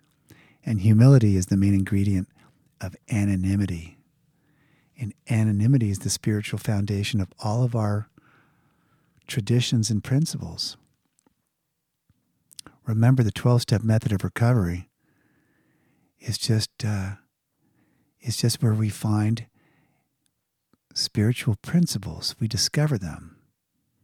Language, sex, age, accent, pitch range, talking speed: English, male, 50-69, American, 100-130 Hz, 100 wpm